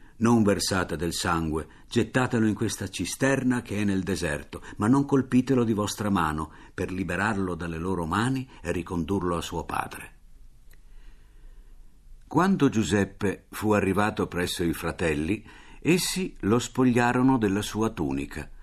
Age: 50-69